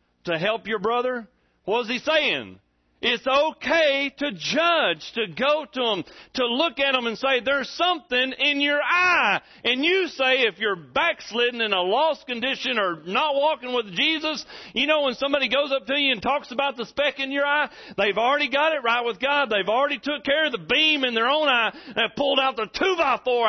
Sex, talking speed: male, 205 wpm